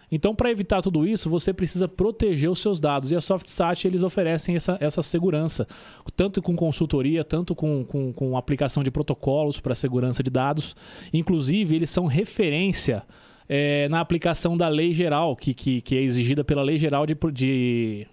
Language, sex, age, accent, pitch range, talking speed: Portuguese, male, 20-39, Brazilian, 140-175 Hz, 165 wpm